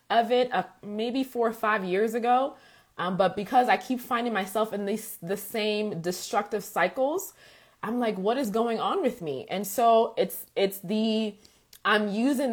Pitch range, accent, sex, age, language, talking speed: 195-250 Hz, American, female, 20-39, English, 175 wpm